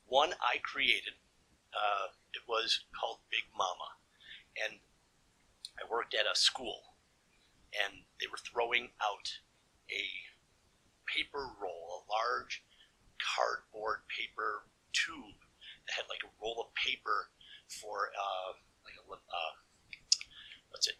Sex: male